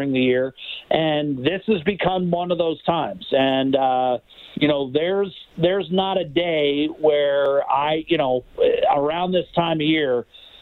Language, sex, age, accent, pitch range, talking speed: English, male, 50-69, American, 135-175 Hz, 160 wpm